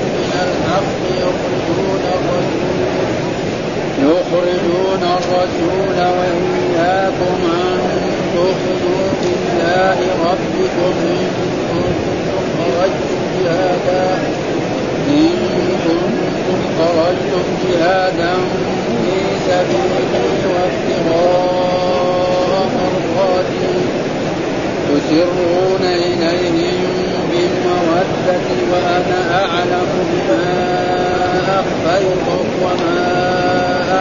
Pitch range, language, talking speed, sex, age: 175-180 Hz, Arabic, 35 wpm, male, 50-69